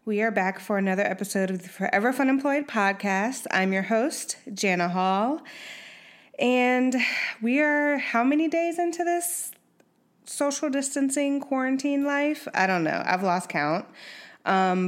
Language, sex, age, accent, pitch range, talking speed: English, female, 20-39, American, 180-230 Hz, 145 wpm